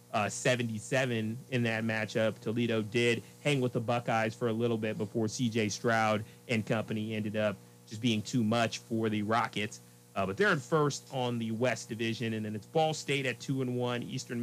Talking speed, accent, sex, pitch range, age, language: 190 wpm, American, male, 115-135 Hz, 30-49, English